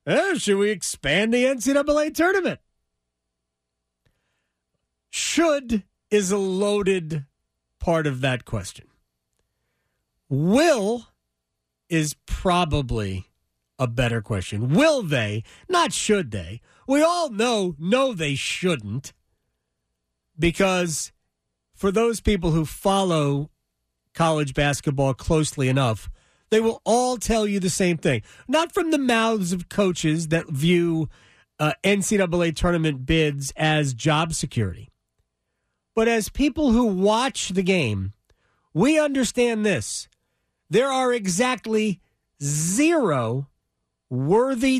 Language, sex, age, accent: English, male, 40-59, American